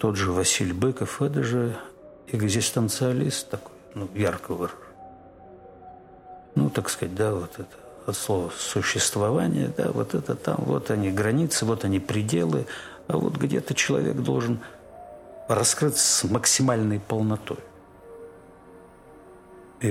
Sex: male